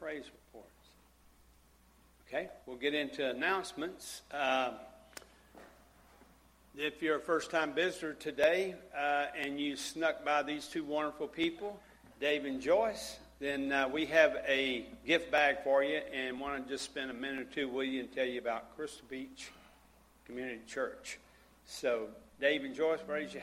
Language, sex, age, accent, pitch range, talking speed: English, male, 50-69, American, 125-155 Hz, 155 wpm